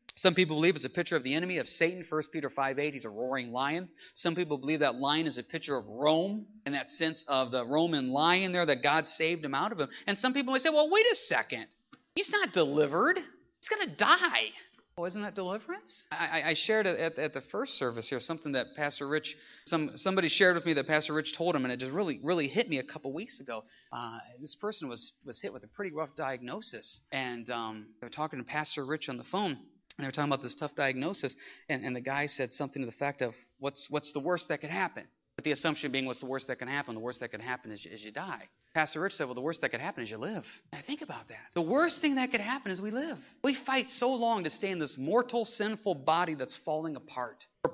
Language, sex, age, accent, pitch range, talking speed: English, male, 30-49, American, 140-225 Hz, 255 wpm